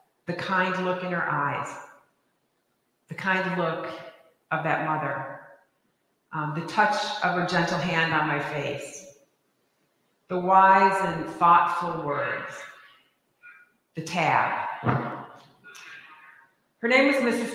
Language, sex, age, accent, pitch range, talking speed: English, female, 40-59, American, 155-190 Hz, 115 wpm